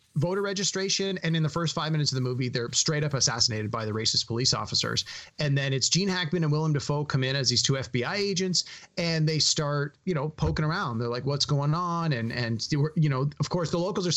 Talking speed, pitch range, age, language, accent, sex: 235 wpm, 125-165 Hz, 30-49, English, American, male